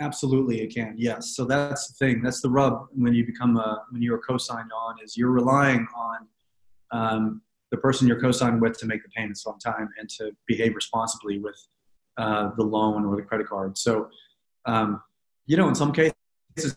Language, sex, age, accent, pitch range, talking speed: English, male, 30-49, American, 110-130 Hz, 195 wpm